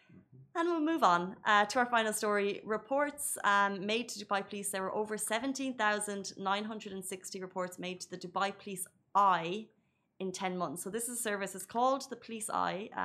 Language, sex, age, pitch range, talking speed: Arabic, female, 20-39, 180-215 Hz, 180 wpm